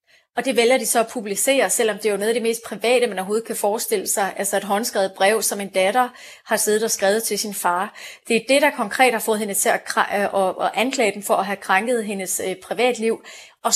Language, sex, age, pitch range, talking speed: Danish, female, 30-49, 200-235 Hz, 255 wpm